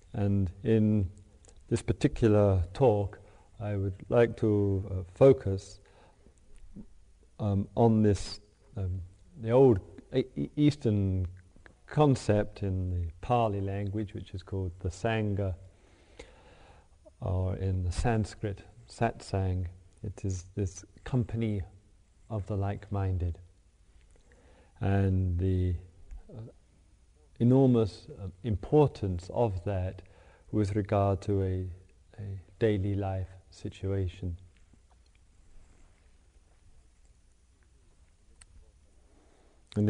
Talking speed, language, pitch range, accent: 85 wpm, English, 85-105 Hz, British